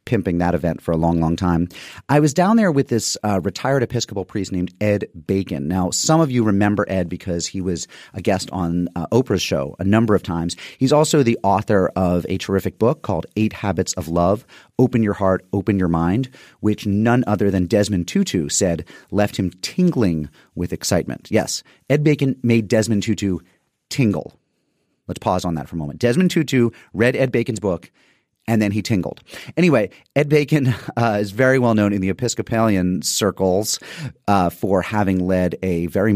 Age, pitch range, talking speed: 30-49, 90-115 Hz, 190 wpm